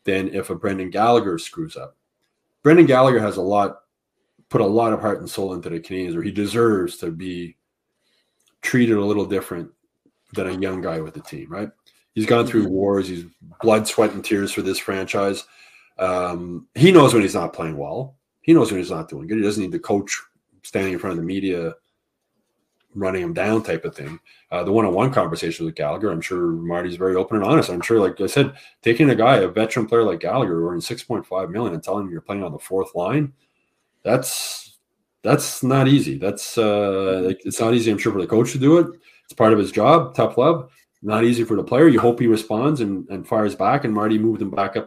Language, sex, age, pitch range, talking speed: English, male, 30-49, 95-120 Hz, 220 wpm